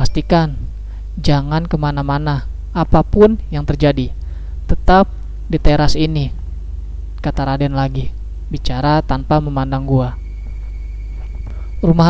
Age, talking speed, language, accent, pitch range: 20-39, 90 wpm, Indonesian, native, 105-165 Hz